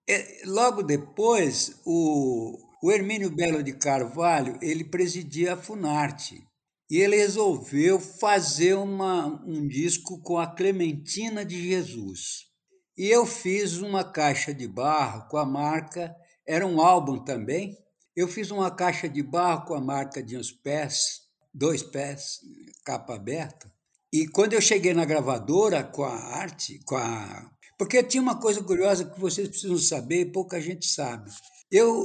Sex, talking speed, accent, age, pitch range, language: male, 145 wpm, Brazilian, 60-79, 150-195 Hz, Portuguese